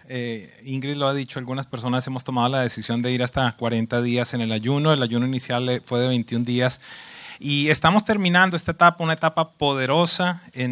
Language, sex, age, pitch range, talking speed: English, male, 30-49, 125-165 Hz, 195 wpm